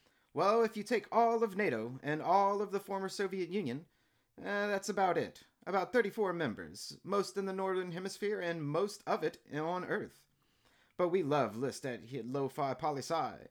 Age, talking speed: 30-49, 170 wpm